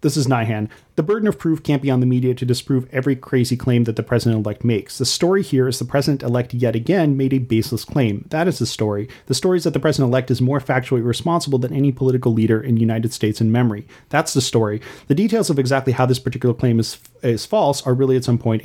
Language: English